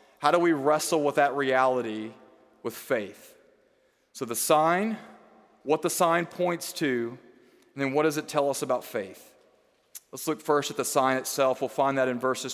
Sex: male